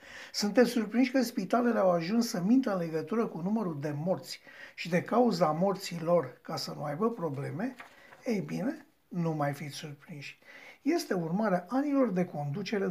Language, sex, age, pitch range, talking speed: Romanian, male, 60-79, 185-245 Hz, 165 wpm